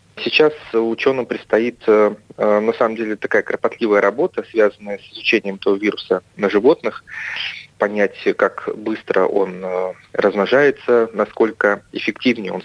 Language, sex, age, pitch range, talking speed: Russian, male, 30-49, 100-120 Hz, 115 wpm